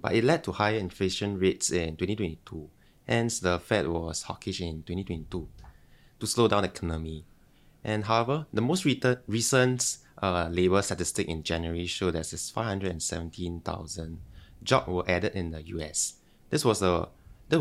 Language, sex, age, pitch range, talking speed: English, male, 20-39, 85-110 Hz, 145 wpm